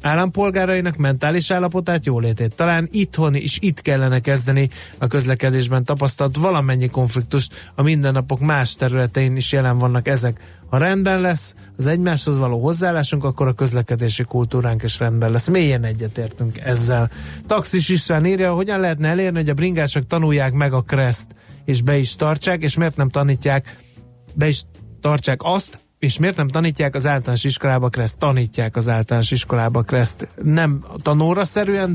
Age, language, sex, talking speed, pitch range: 30-49, Hungarian, male, 150 wpm, 125-160 Hz